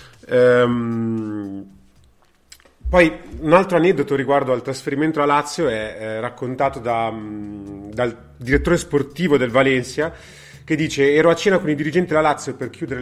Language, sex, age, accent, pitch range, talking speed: Italian, male, 30-49, native, 115-145 Hz, 145 wpm